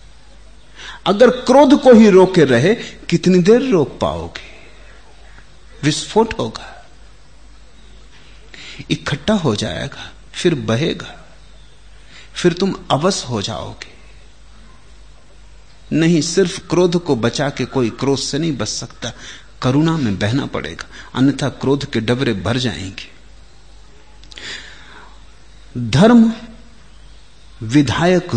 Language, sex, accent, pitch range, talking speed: Hindi, male, native, 110-170 Hz, 95 wpm